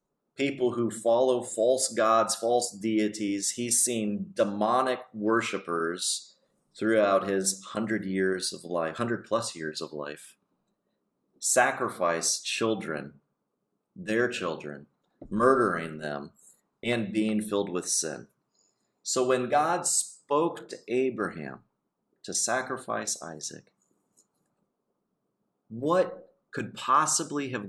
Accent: American